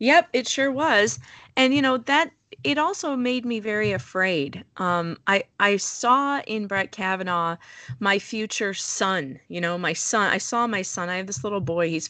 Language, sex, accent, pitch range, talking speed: English, female, American, 180-230 Hz, 190 wpm